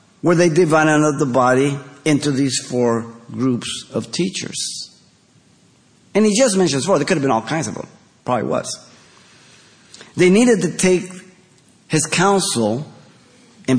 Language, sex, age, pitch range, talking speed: English, male, 50-69, 110-155 Hz, 145 wpm